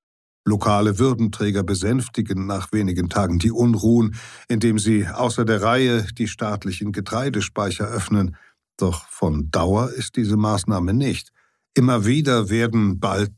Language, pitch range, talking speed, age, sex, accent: German, 95-115 Hz, 125 wpm, 60-79, male, German